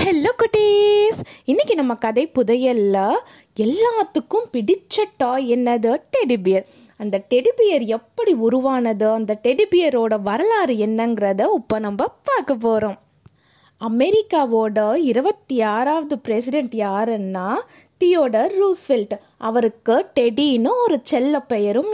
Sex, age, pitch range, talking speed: female, 20-39, 225-315 Hz, 95 wpm